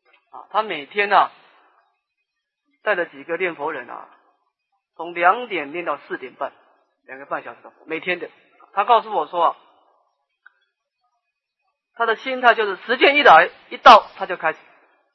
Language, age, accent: Chinese, 40-59, native